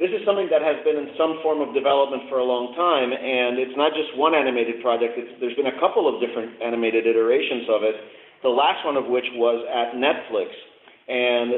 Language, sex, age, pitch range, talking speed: English, male, 40-59, 125-155 Hz, 210 wpm